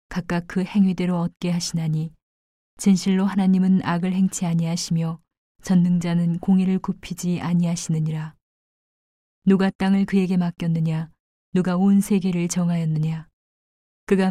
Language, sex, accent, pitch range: Korean, female, native, 165-190 Hz